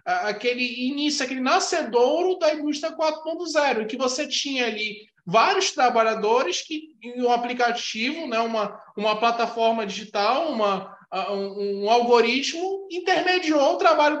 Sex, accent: male, Brazilian